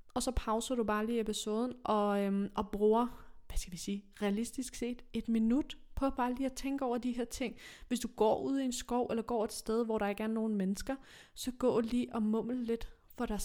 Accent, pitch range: native, 195-235 Hz